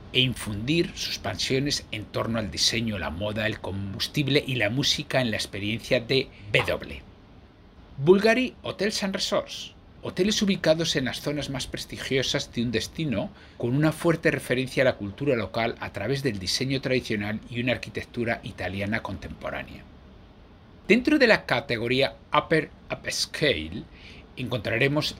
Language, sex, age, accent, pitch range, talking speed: Spanish, male, 60-79, Spanish, 105-150 Hz, 140 wpm